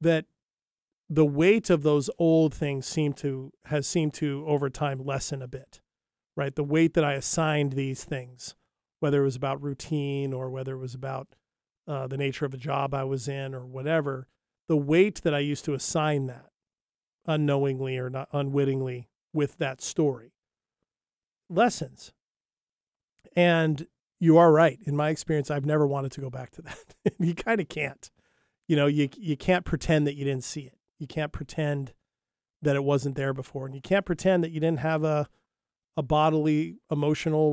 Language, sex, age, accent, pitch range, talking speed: English, male, 40-59, American, 140-160 Hz, 180 wpm